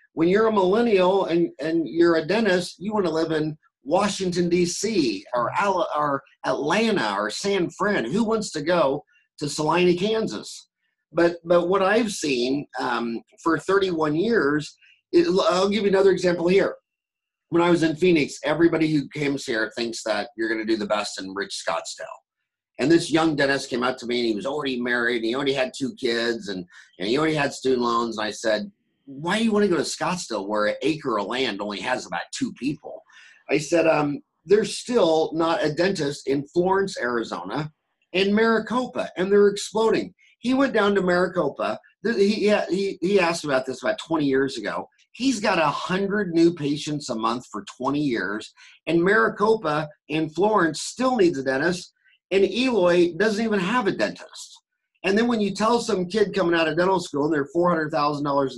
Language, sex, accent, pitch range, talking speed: English, male, American, 140-200 Hz, 190 wpm